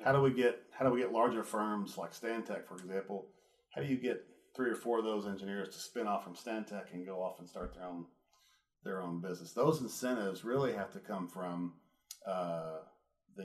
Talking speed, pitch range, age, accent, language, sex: 215 wpm, 90-115 Hz, 40-59, American, English, male